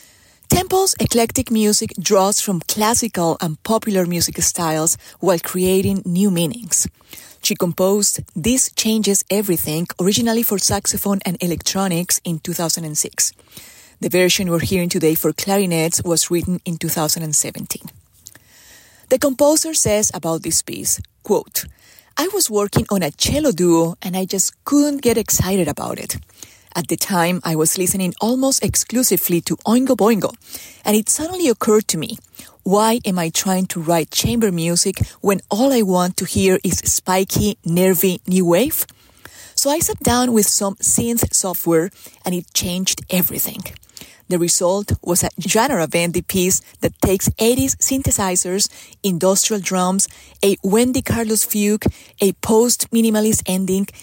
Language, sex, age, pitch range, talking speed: English, female, 30-49, 170-215 Hz, 140 wpm